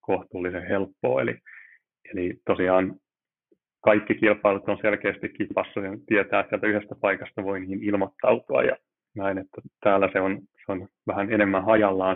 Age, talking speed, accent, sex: 30-49, 145 wpm, native, male